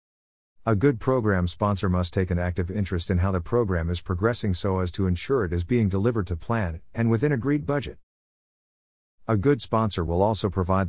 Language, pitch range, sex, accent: English, 85-110 Hz, male, American